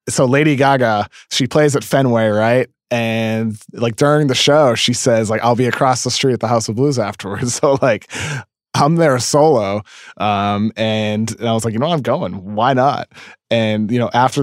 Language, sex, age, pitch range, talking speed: English, male, 20-39, 110-140 Hz, 200 wpm